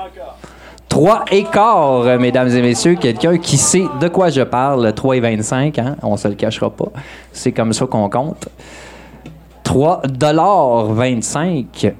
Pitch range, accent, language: 115-170 Hz, Canadian, French